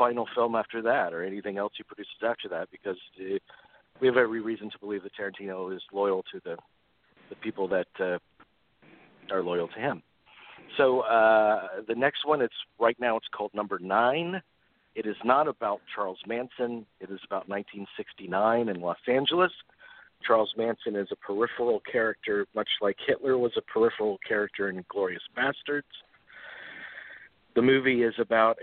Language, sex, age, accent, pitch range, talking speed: English, male, 50-69, American, 100-130 Hz, 160 wpm